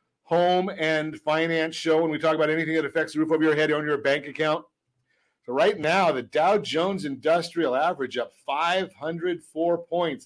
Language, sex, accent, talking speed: English, male, American, 180 wpm